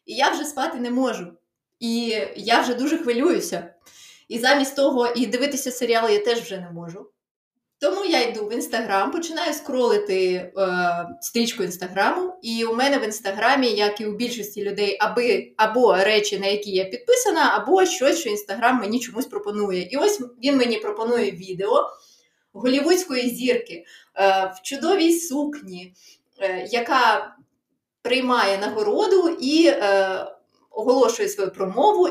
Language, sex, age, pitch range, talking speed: Ukrainian, female, 20-39, 200-275 Hz, 145 wpm